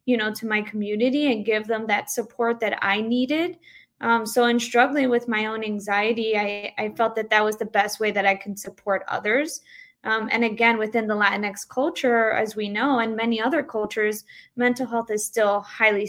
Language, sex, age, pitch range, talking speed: English, female, 20-39, 215-255 Hz, 200 wpm